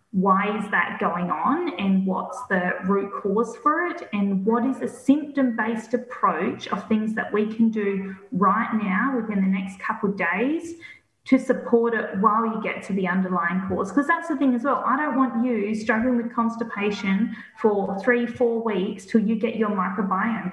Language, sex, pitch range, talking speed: English, female, 205-255 Hz, 185 wpm